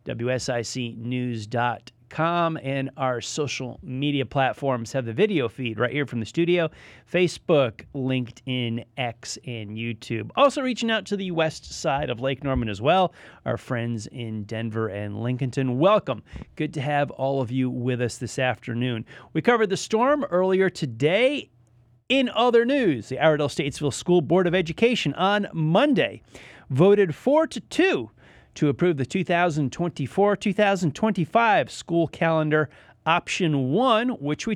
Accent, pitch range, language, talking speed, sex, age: American, 130-190 Hz, English, 140 wpm, male, 30-49